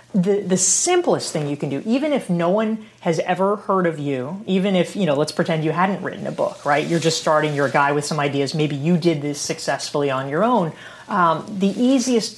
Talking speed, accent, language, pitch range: 235 wpm, American, English, 145-200 Hz